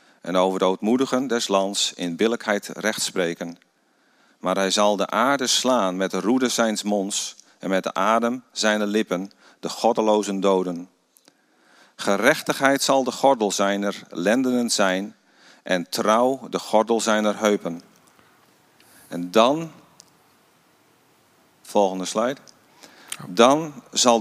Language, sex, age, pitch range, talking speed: Dutch, male, 40-59, 95-120 Hz, 120 wpm